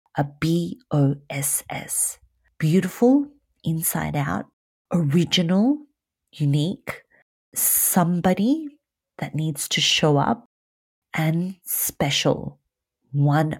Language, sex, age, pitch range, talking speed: English, female, 40-59, 150-185 Hz, 70 wpm